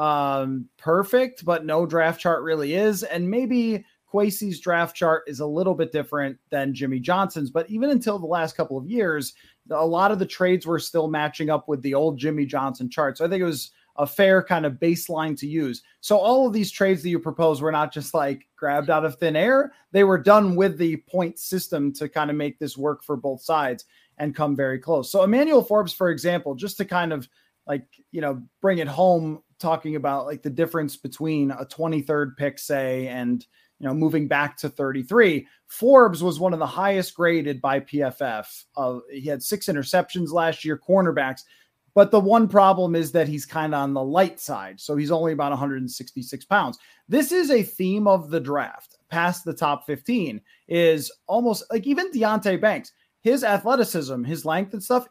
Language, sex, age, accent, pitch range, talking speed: English, male, 20-39, American, 145-195 Hz, 200 wpm